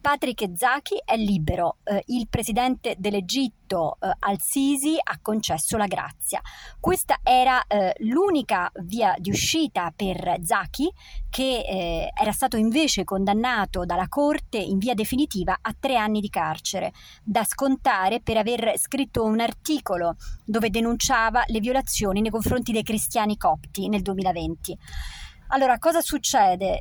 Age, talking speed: 30-49, 135 wpm